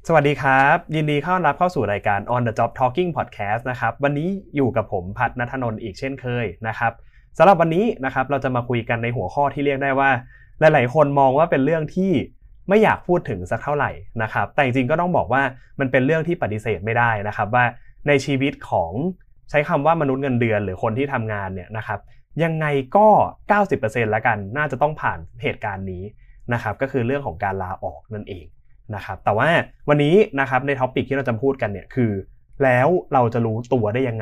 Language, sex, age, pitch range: Thai, male, 20-39, 110-140 Hz